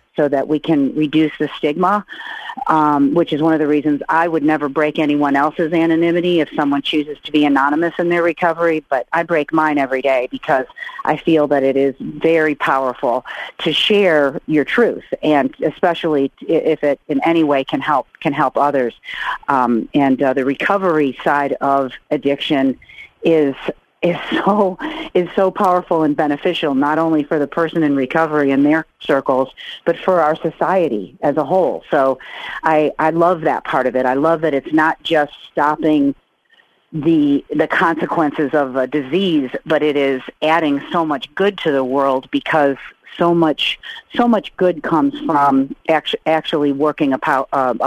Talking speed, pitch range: 175 wpm, 140-170 Hz